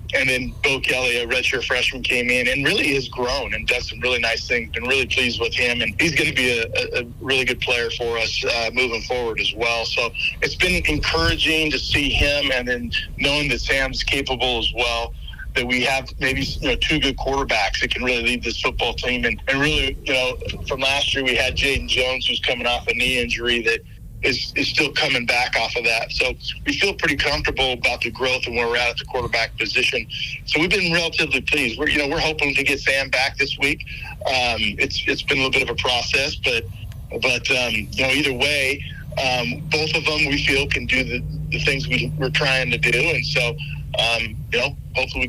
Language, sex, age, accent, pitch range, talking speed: English, male, 40-59, American, 120-140 Hz, 225 wpm